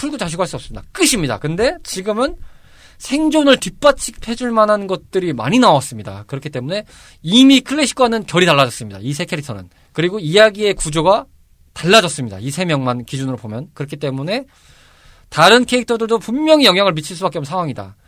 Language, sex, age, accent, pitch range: Korean, male, 20-39, native, 135-215 Hz